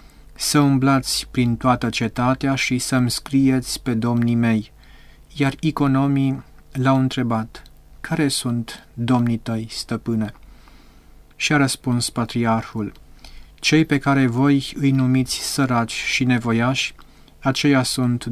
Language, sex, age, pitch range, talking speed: Romanian, male, 30-49, 115-140 Hz, 115 wpm